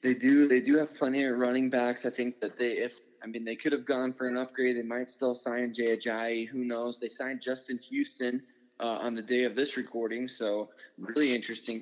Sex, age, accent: male, 20-39, American